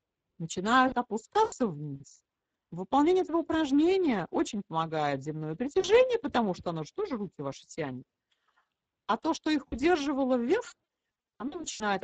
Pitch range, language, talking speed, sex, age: 160-255 Hz, Russian, 130 wpm, female, 40-59